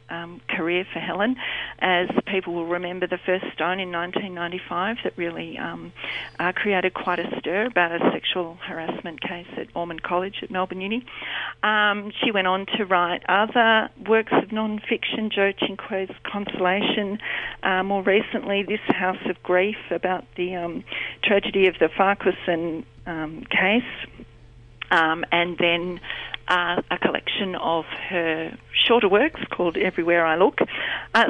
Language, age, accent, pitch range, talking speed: English, 40-59, Australian, 175-210 Hz, 145 wpm